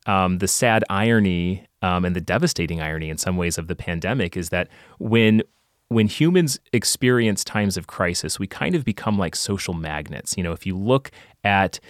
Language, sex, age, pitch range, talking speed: English, male, 30-49, 90-115 Hz, 185 wpm